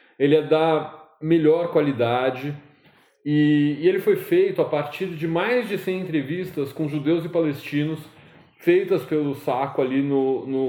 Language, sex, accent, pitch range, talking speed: Portuguese, male, Brazilian, 135-170 Hz, 150 wpm